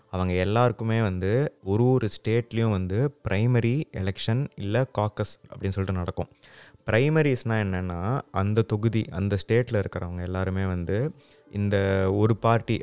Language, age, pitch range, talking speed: Tamil, 20-39, 95-110 Hz, 120 wpm